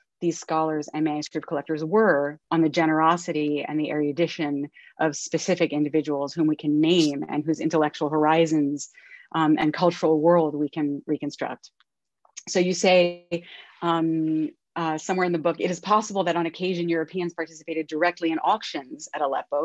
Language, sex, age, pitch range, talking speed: English, female, 30-49, 150-175 Hz, 160 wpm